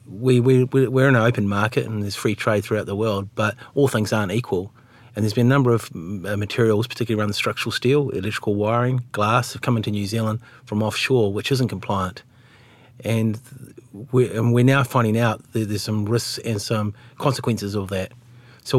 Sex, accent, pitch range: male, Australian, 105-125 Hz